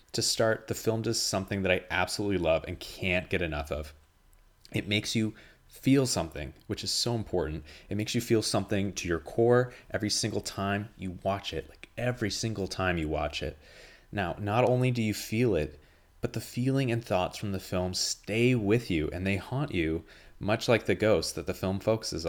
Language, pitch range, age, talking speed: English, 85-110 Hz, 30-49, 200 wpm